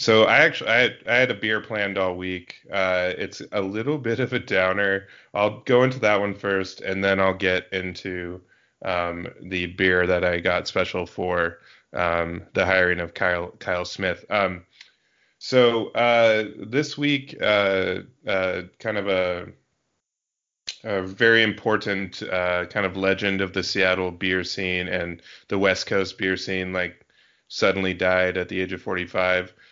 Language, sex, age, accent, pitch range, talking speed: English, male, 20-39, American, 95-105 Hz, 165 wpm